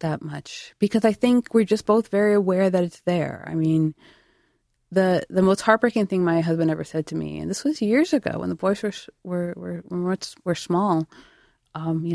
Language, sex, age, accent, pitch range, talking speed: English, female, 20-39, American, 160-210 Hz, 205 wpm